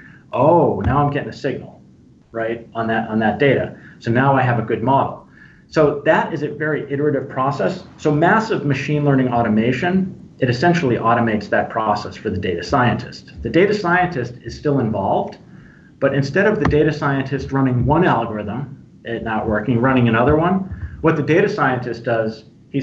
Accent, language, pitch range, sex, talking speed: American, English, 110-150 Hz, male, 175 wpm